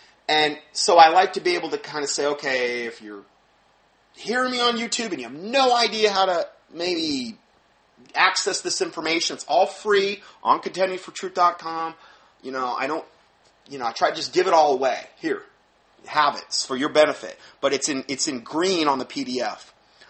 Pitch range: 135-205 Hz